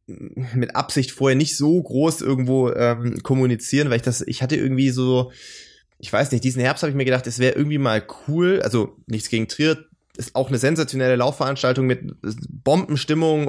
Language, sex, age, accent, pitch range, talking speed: German, male, 20-39, German, 120-145 Hz, 180 wpm